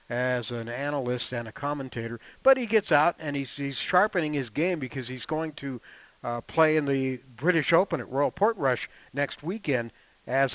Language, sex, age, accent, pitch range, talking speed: English, male, 60-79, American, 130-160 Hz, 180 wpm